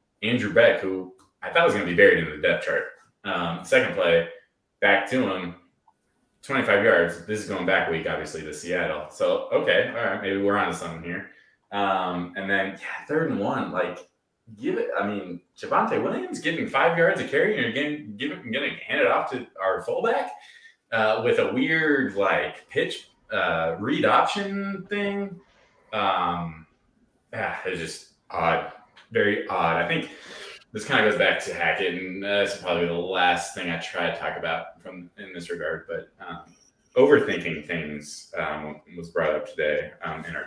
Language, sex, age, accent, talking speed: English, male, 20-39, American, 180 wpm